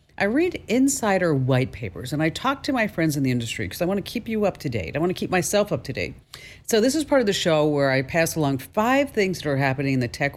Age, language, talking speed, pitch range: 50-69, English, 290 wpm, 130-200 Hz